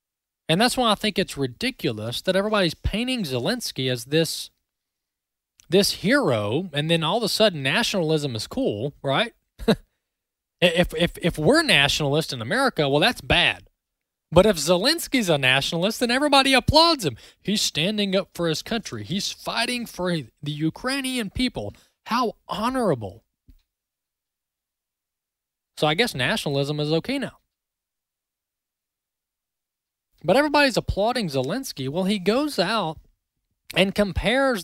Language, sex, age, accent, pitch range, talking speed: English, male, 20-39, American, 145-245 Hz, 130 wpm